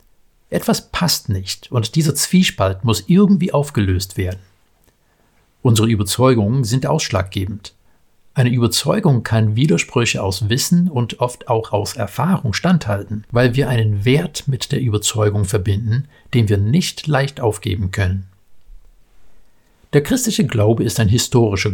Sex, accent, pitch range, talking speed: male, German, 100-130 Hz, 125 wpm